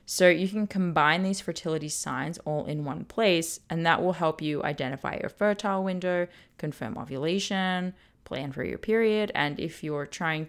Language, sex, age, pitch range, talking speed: English, female, 20-39, 150-185 Hz, 170 wpm